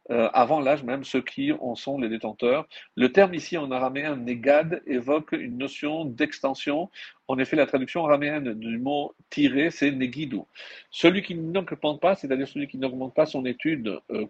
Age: 50-69